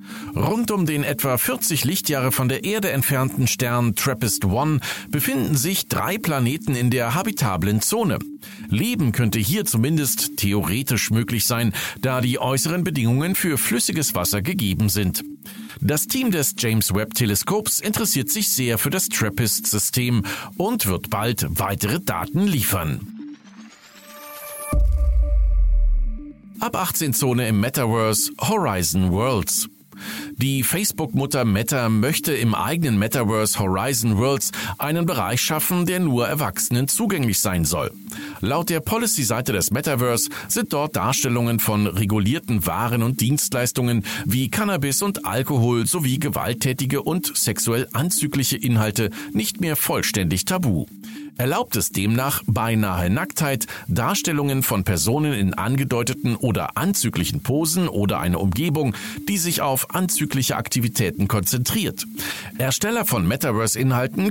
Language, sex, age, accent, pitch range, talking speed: German, male, 50-69, German, 110-155 Hz, 120 wpm